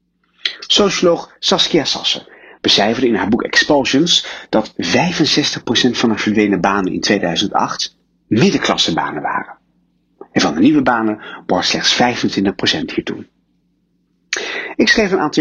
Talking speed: 120 wpm